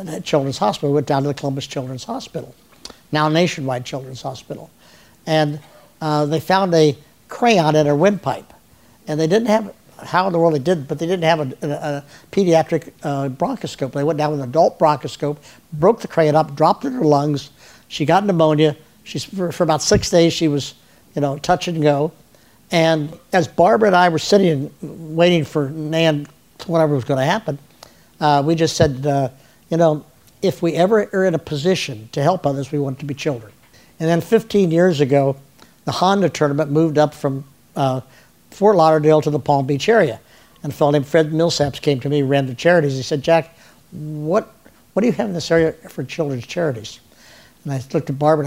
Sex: male